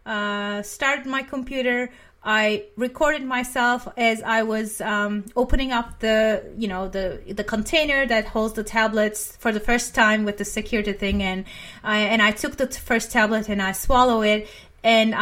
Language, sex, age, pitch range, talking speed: English, female, 30-49, 210-245 Hz, 175 wpm